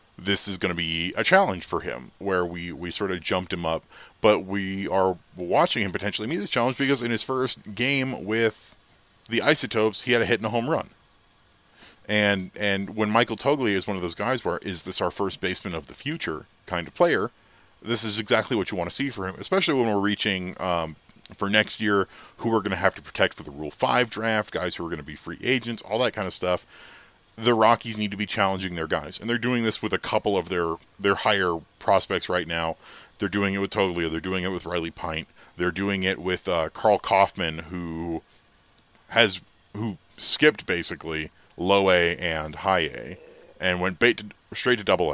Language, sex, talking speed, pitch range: English, male, 220 wpm, 85-110 Hz